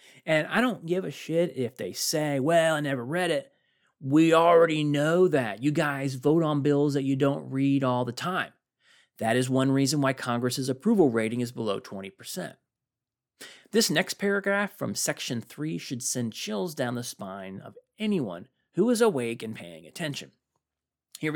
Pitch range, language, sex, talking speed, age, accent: 120-185 Hz, English, male, 175 wpm, 30-49, American